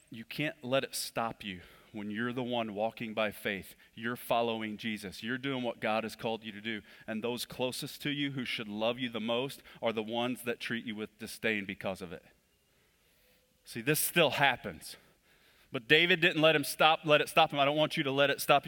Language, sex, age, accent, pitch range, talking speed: English, male, 30-49, American, 125-185 Hz, 220 wpm